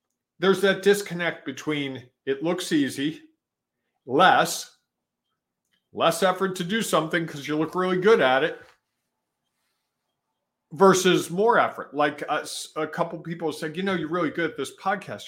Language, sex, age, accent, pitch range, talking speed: English, male, 50-69, American, 145-185 Hz, 145 wpm